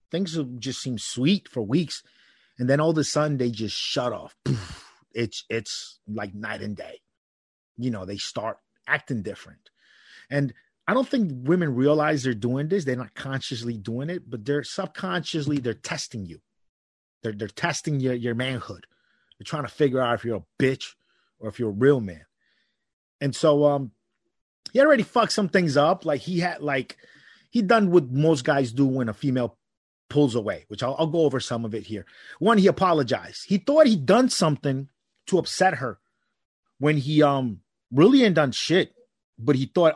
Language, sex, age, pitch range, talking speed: English, male, 30-49, 120-160 Hz, 185 wpm